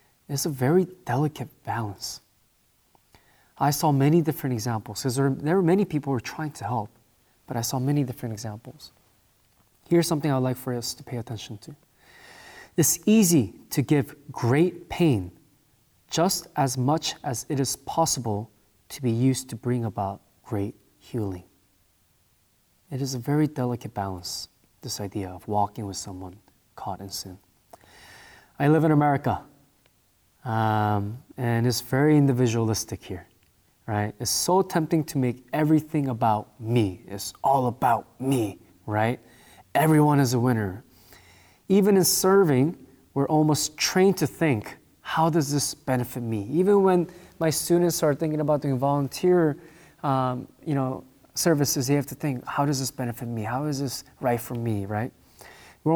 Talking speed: 150 wpm